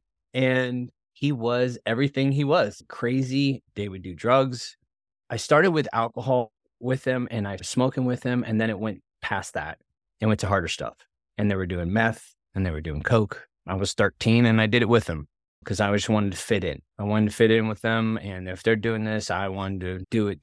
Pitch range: 95-110 Hz